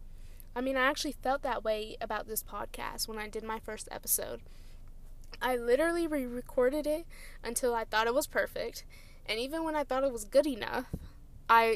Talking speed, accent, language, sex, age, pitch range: 185 wpm, American, English, female, 10-29, 200-260 Hz